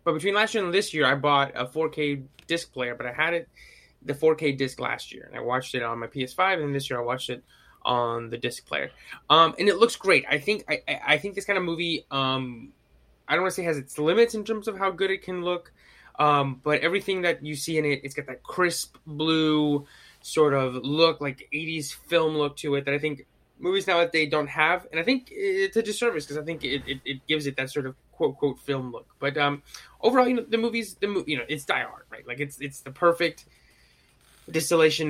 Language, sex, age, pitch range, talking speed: English, male, 20-39, 130-165 Hz, 245 wpm